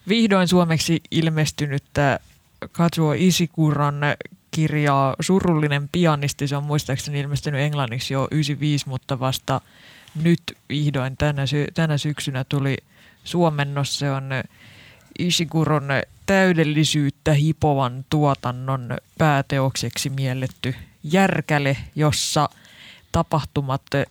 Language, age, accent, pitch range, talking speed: Finnish, 20-39, native, 135-155 Hz, 90 wpm